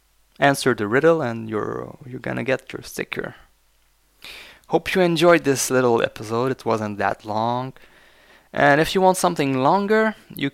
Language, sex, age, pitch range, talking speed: English, male, 20-39, 110-140 Hz, 155 wpm